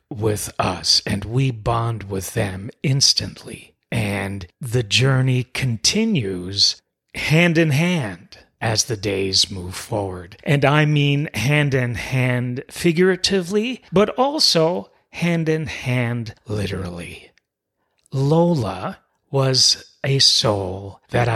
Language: English